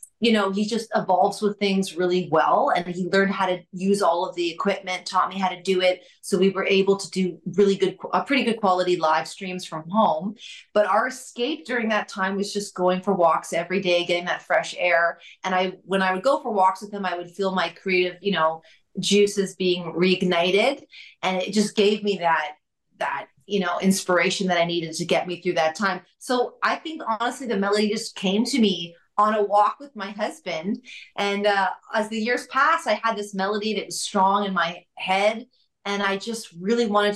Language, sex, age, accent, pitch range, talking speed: English, female, 30-49, American, 180-210 Hz, 215 wpm